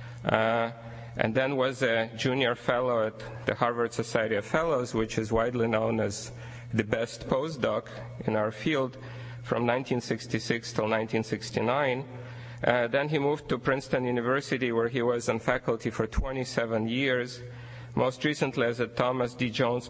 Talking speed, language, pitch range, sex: 150 wpm, English, 115-125 Hz, male